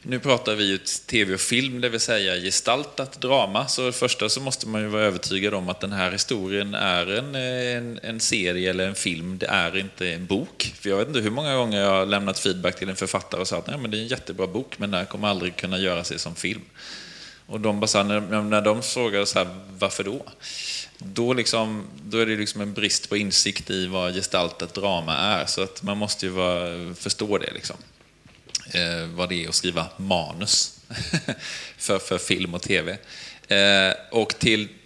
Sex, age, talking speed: male, 20-39, 205 wpm